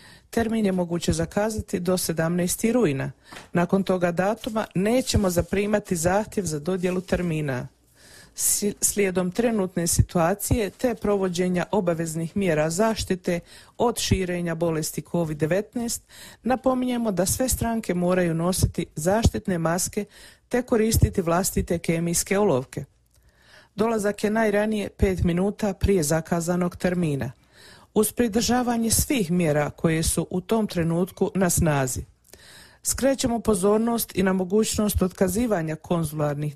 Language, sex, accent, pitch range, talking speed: Croatian, female, native, 170-215 Hz, 110 wpm